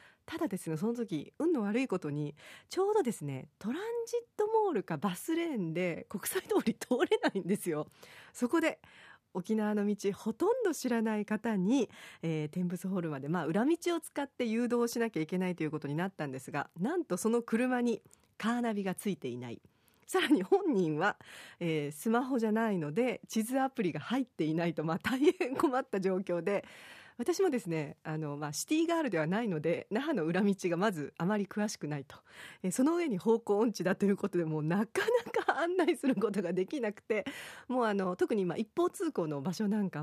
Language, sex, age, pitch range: Japanese, female, 40-59, 175-270 Hz